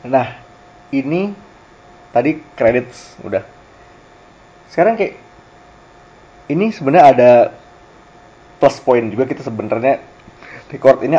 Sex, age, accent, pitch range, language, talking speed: male, 30-49, native, 120-150 Hz, Indonesian, 90 wpm